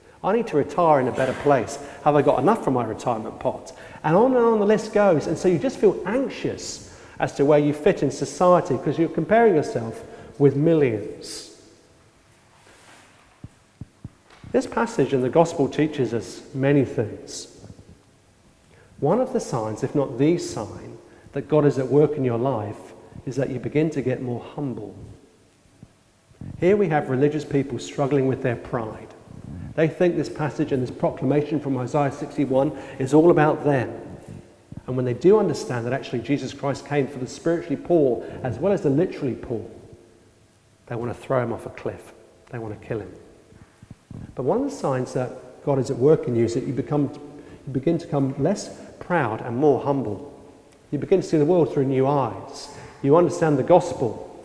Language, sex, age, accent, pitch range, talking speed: English, male, 40-59, British, 125-155 Hz, 185 wpm